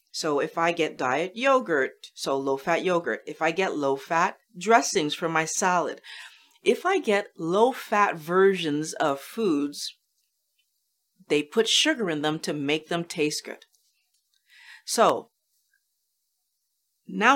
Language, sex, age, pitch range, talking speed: English, female, 40-59, 170-250 Hz, 125 wpm